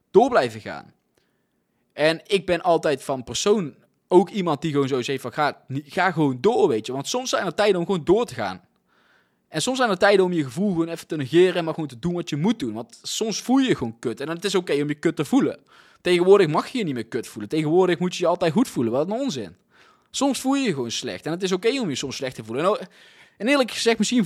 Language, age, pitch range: Dutch, 20-39, 145-205 Hz